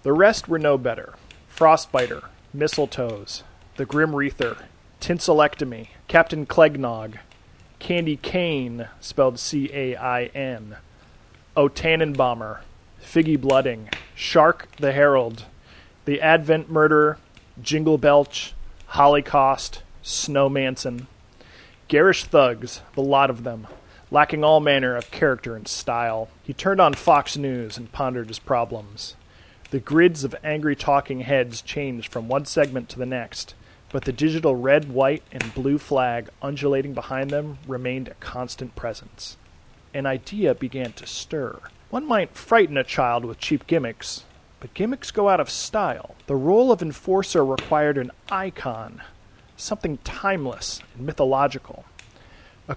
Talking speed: 130 wpm